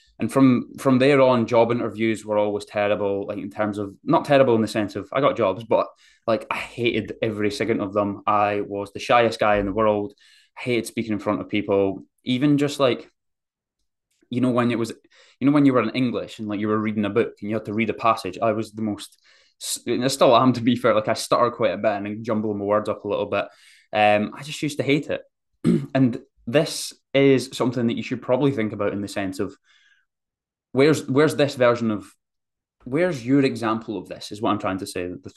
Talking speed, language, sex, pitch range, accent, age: 235 wpm, English, male, 105-130 Hz, British, 20-39